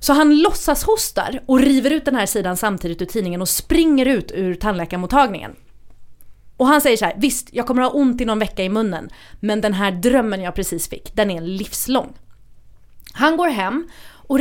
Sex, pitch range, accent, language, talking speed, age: female, 185-255 Hz, native, Swedish, 200 wpm, 30-49